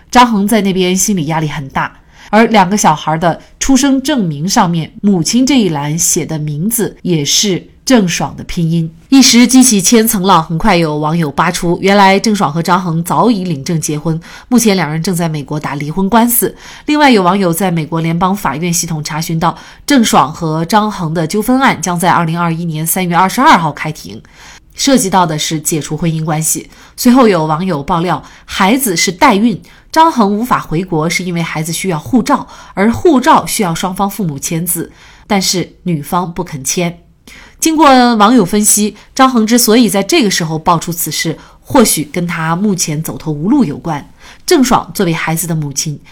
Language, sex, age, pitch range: Chinese, female, 30-49, 165-220 Hz